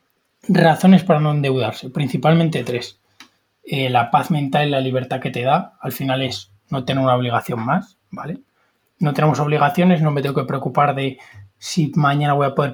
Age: 20-39